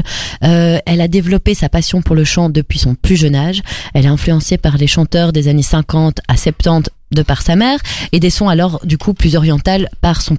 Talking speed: 225 wpm